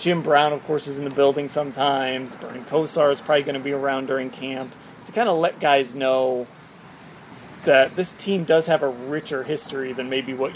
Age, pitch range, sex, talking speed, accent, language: 30-49, 140-185 Hz, male, 205 wpm, American, English